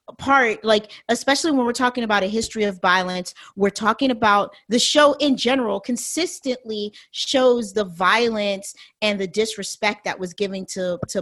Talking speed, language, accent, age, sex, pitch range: 160 wpm, English, American, 40-59, female, 195-250 Hz